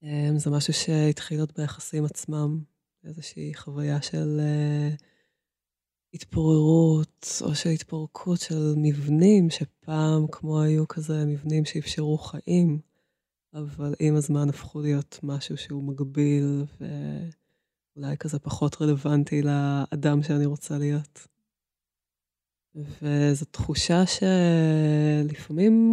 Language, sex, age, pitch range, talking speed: Hebrew, female, 20-39, 145-165 Hz, 95 wpm